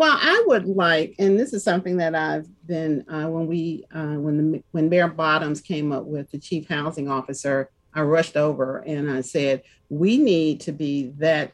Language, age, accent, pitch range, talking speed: English, 40-59, American, 145-165 Hz, 190 wpm